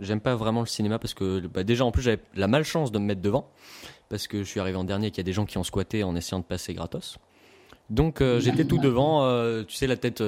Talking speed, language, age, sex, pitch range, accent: 285 wpm, French, 20-39, male, 100-135 Hz, French